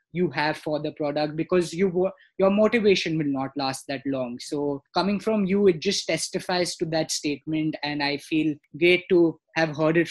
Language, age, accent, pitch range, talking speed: English, 20-39, Indian, 155-185 Hz, 185 wpm